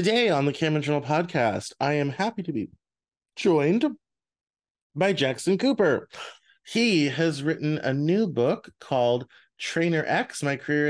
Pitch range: 110-165 Hz